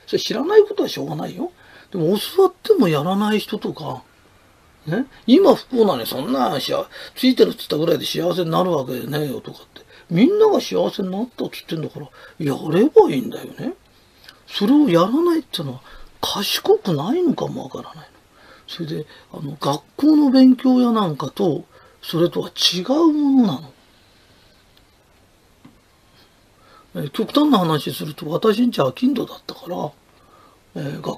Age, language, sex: 40-59, Japanese, male